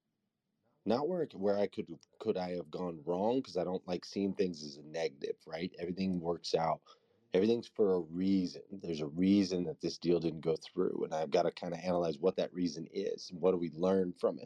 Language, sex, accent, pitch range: English, male, American, 85-110 Hz